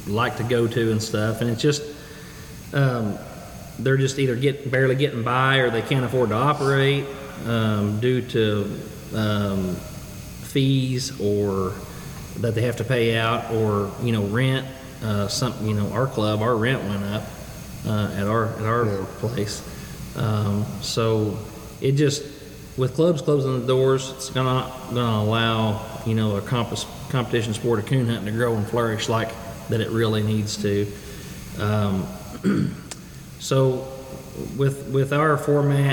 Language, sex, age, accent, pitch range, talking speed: English, male, 40-59, American, 110-130 Hz, 155 wpm